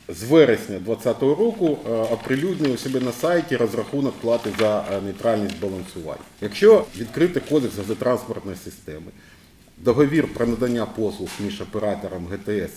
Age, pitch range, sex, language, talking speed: 50-69, 105-140 Hz, male, Ukrainian, 115 wpm